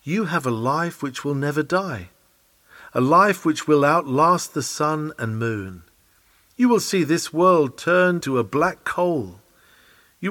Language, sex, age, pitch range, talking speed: English, male, 50-69, 115-180 Hz, 165 wpm